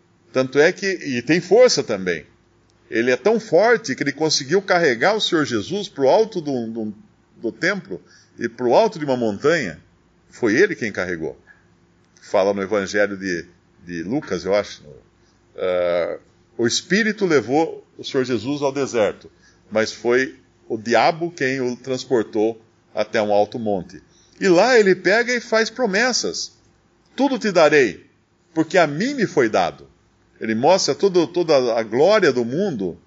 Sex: male